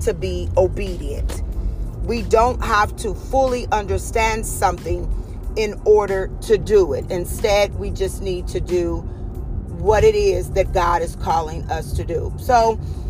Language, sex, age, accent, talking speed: English, female, 40-59, American, 145 wpm